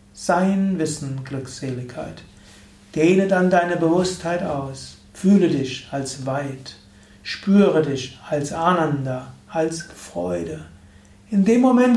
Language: German